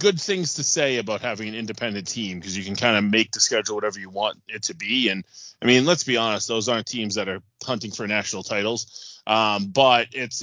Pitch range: 105-135 Hz